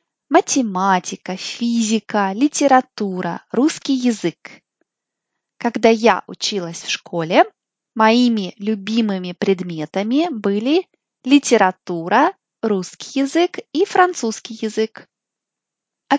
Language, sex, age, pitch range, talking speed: Russian, female, 20-39, 200-270 Hz, 80 wpm